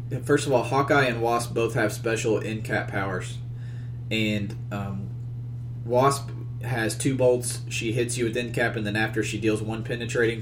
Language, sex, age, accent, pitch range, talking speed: English, male, 20-39, American, 110-120 Hz, 180 wpm